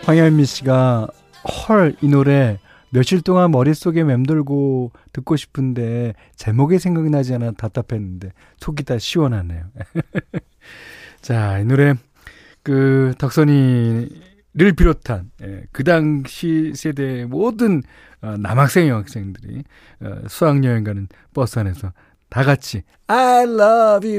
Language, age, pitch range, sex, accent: Korean, 40-59, 105-160 Hz, male, native